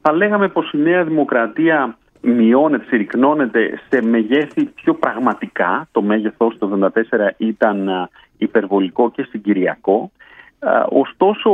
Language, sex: Greek, male